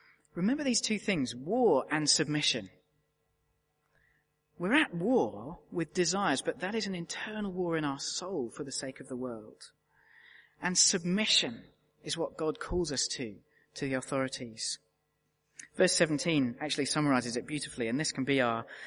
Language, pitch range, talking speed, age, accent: English, 130-175 Hz, 155 wpm, 30-49, British